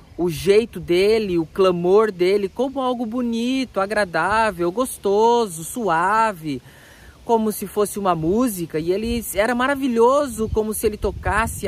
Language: Portuguese